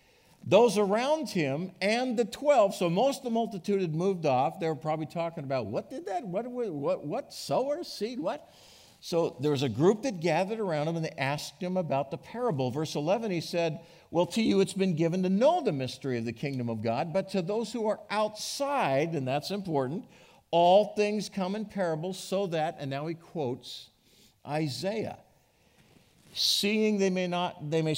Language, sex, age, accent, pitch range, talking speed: English, male, 50-69, American, 145-210 Hz, 195 wpm